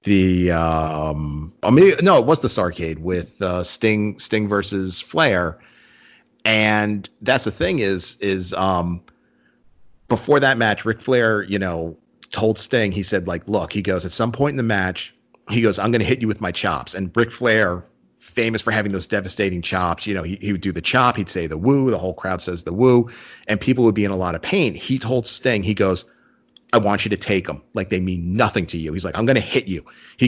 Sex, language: male, English